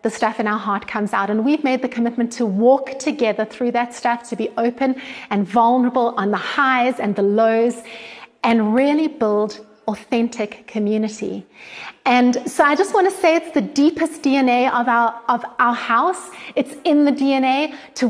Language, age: English, 30-49